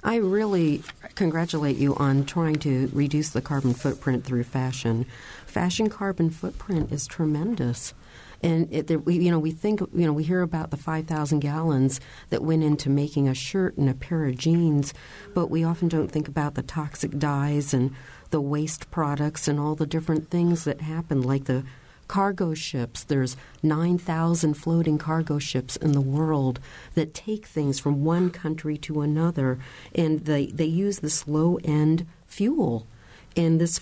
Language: English